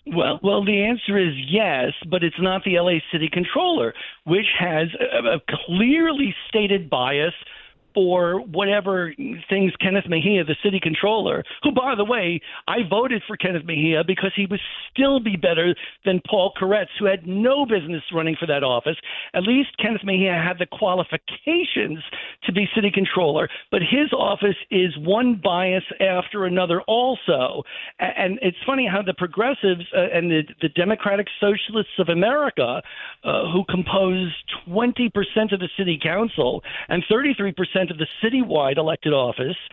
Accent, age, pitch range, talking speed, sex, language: American, 50-69, 170-215 Hz, 155 wpm, male, English